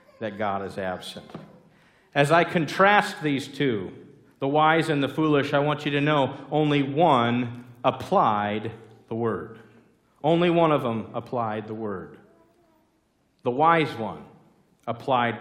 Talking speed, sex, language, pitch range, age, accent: 135 wpm, male, English, 110-145 Hz, 50-69, American